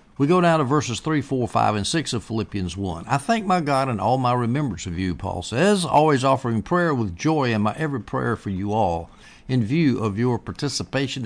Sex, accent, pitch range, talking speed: male, American, 95-125 Hz, 225 wpm